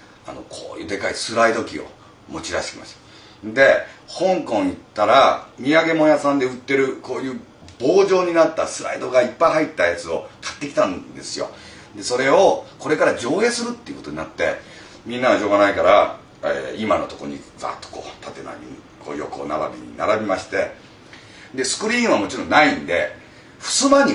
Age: 30-49